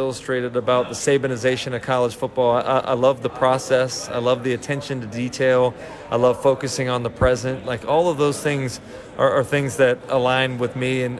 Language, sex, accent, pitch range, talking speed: English, male, American, 130-145 Hz, 200 wpm